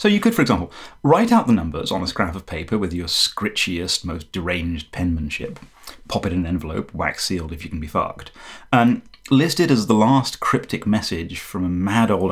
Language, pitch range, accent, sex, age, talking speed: English, 85-110 Hz, British, male, 30-49, 215 wpm